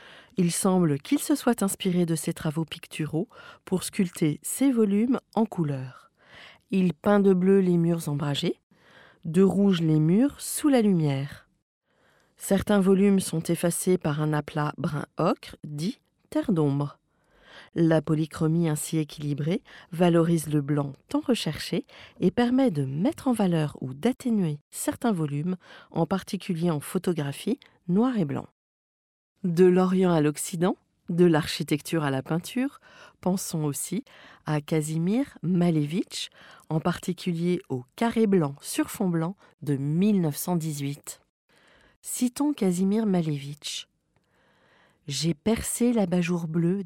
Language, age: French, 40-59